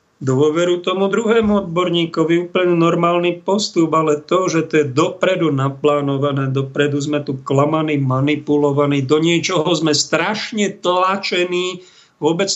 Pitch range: 135-165 Hz